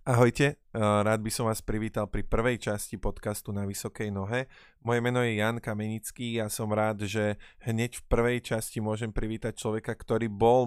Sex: male